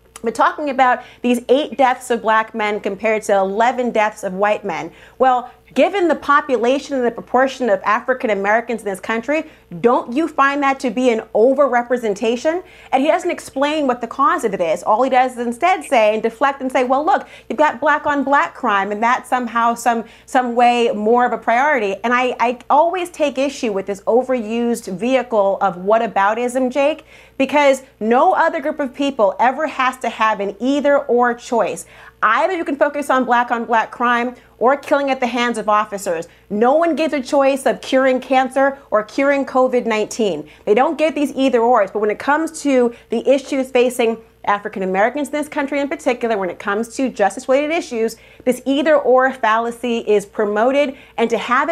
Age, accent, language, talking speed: 30-49, American, English, 185 wpm